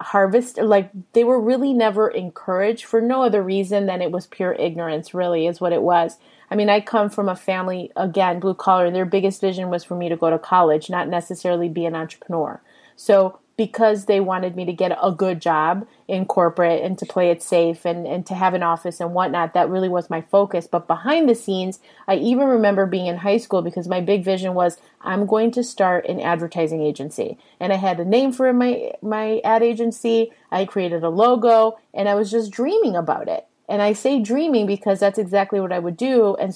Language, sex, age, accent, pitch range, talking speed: English, female, 30-49, American, 180-225 Hz, 215 wpm